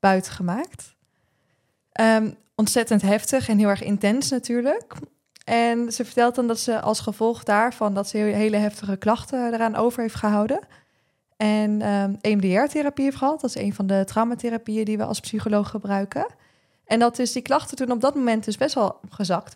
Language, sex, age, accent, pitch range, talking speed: Dutch, female, 20-39, Dutch, 205-240 Hz, 165 wpm